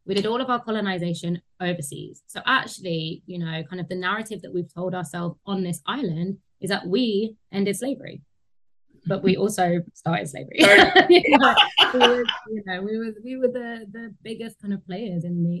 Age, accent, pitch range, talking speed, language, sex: 20-39, British, 160-195 Hz, 190 wpm, English, female